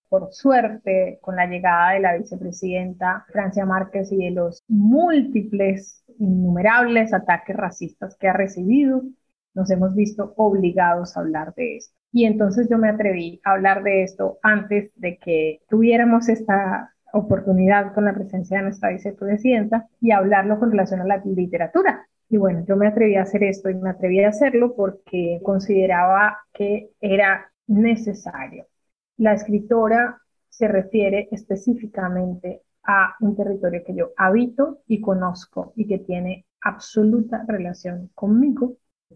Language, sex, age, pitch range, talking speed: Spanish, female, 30-49, 180-215 Hz, 145 wpm